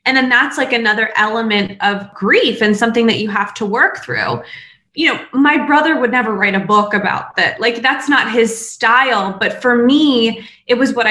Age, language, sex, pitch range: 20-39, English, female, 205-245 Hz